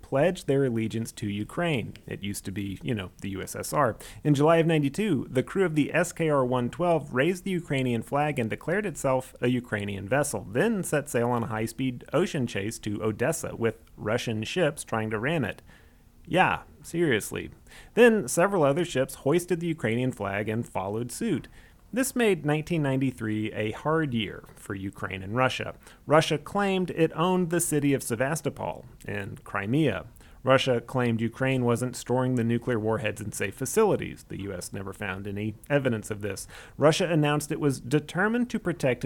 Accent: American